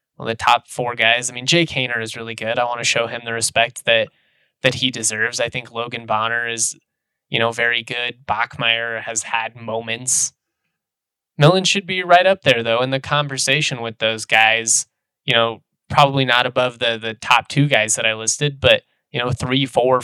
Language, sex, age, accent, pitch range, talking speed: English, male, 20-39, American, 115-135 Hz, 200 wpm